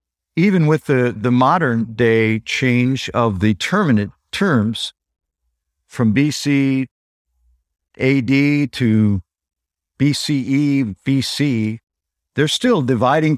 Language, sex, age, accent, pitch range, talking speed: English, male, 50-69, American, 105-150 Hz, 90 wpm